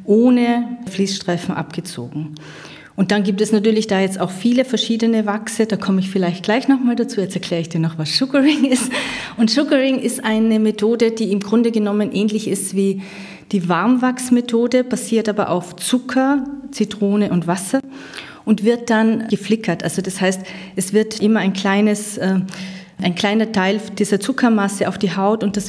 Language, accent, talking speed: German, German, 170 wpm